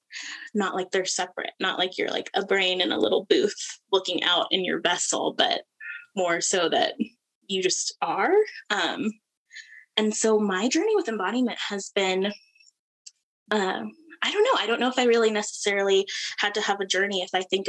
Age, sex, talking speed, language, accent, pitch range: 10-29, female, 185 wpm, English, American, 190-265 Hz